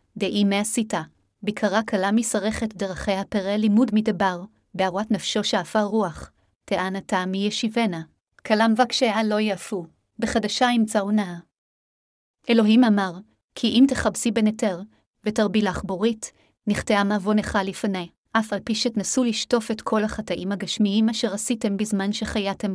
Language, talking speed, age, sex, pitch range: Hebrew, 125 wpm, 30-49, female, 200-225 Hz